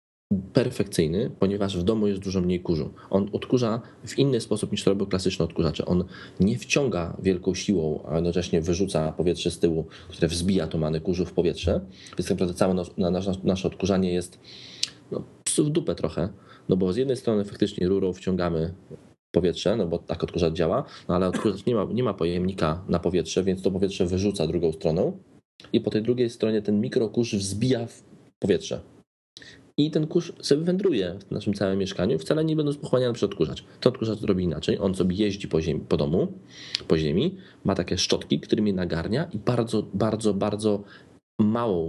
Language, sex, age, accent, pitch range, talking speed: Polish, male, 20-39, native, 90-110 Hz, 180 wpm